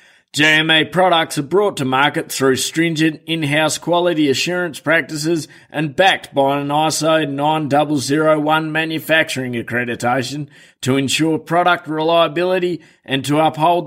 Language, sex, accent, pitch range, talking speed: English, male, Australian, 130-160 Hz, 115 wpm